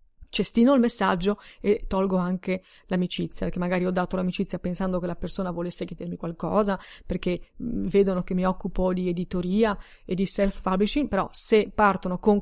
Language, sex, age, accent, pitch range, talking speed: Italian, female, 30-49, native, 185-215 Hz, 165 wpm